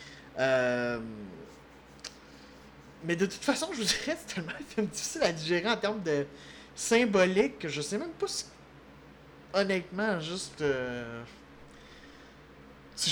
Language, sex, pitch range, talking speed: French, male, 140-185 Hz, 135 wpm